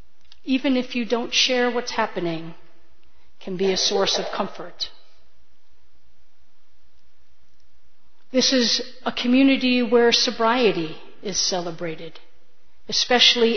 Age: 40-59